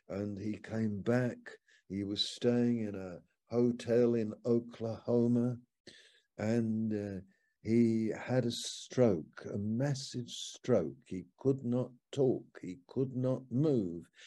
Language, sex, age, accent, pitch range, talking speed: English, male, 60-79, British, 110-125 Hz, 120 wpm